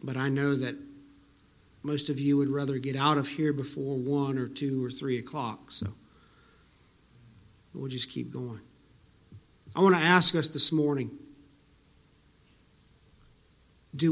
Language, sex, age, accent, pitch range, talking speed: English, male, 50-69, American, 130-165 Hz, 140 wpm